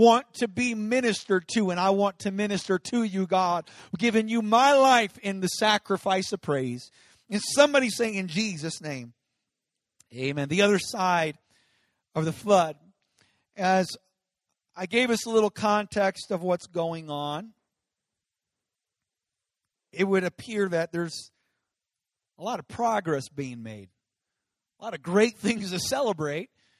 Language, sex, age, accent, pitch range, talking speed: English, male, 40-59, American, 170-225 Hz, 145 wpm